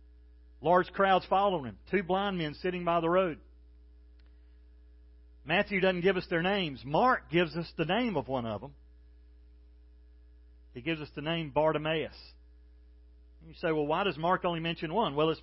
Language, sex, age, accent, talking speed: English, male, 40-59, American, 165 wpm